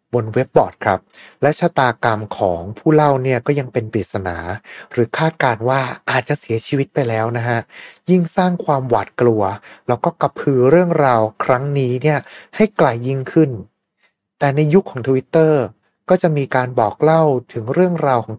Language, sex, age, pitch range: Thai, male, 60-79, 110-150 Hz